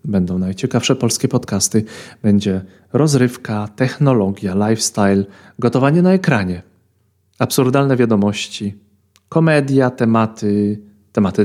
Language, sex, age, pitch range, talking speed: Polish, male, 30-49, 100-120 Hz, 85 wpm